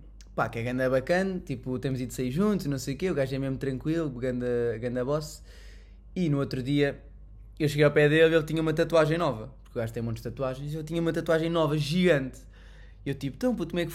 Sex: male